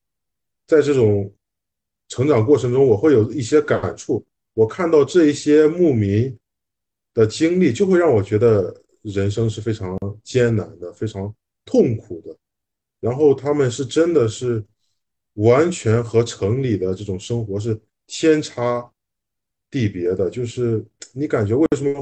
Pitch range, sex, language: 105-150 Hz, male, Chinese